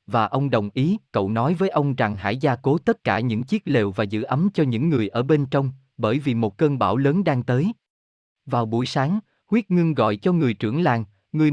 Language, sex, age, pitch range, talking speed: Vietnamese, male, 20-39, 110-155 Hz, 235 wpm